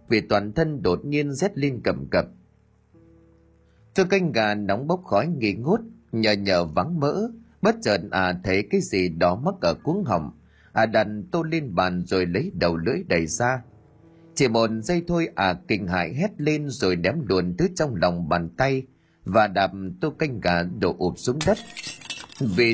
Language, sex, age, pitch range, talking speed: Vietnamese, male, 30-49, 90-150 Hz, 185 wpm